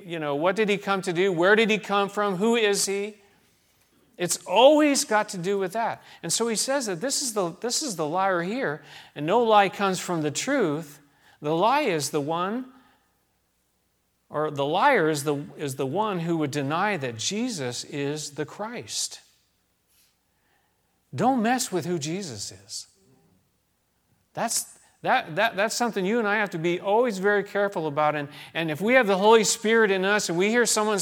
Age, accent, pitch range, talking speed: 40-59, American, 150-225 Hz, 190 wpm